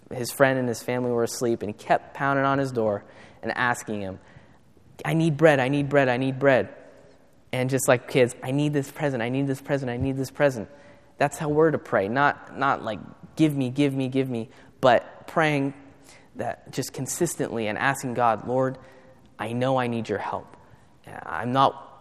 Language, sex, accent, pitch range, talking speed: English, male, American, 110-135 Hz, 200 wpm